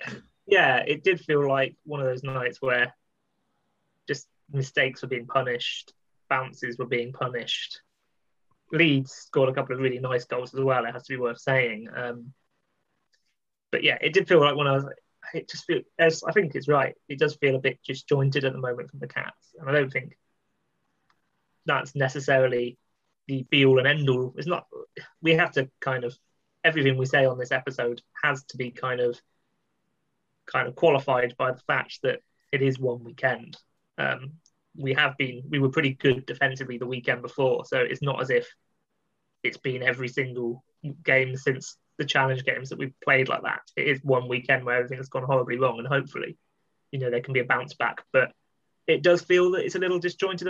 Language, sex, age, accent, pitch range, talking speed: English, male, 20-39, British, 130-150 Hz, 190 wpm